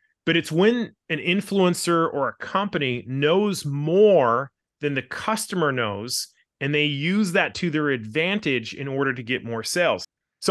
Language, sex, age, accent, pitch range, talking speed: English, male, 30-49, American, 130-170 Hz, 160 wpm